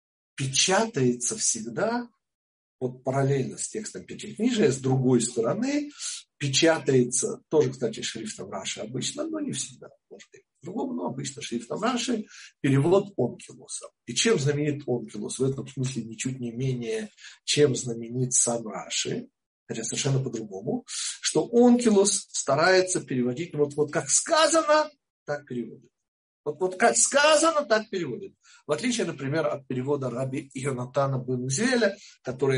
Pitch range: 130-220 Hz